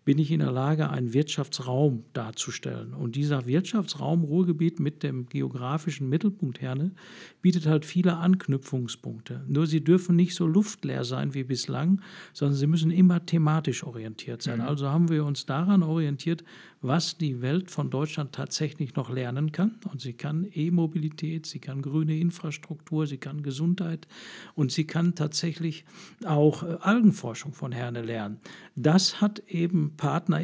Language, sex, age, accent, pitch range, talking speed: German, male, 50-69, German, 145-175 Hz, 150 wpm